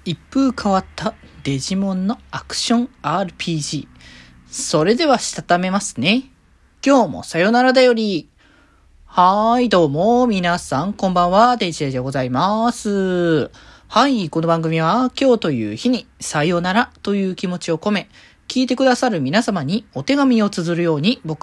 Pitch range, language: 145-220 Hz, Japanese